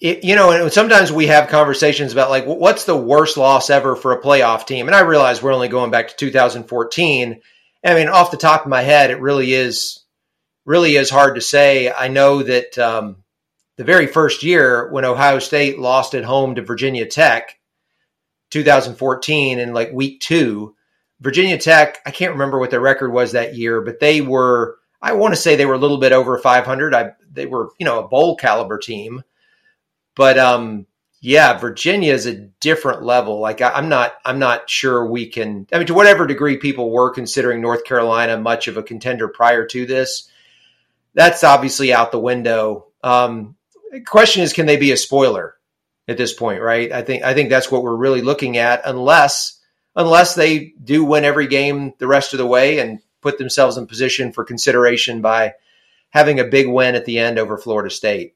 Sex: male